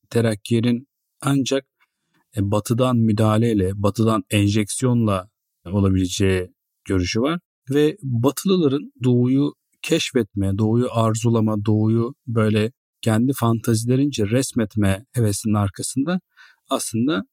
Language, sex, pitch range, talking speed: Turkish, male, 105-145 Hz, 80 wpm